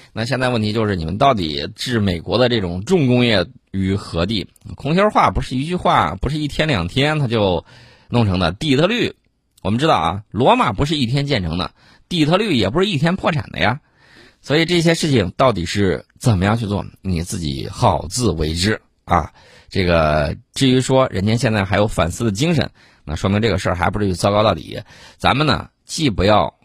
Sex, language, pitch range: male, Chinese, 85-125 Hz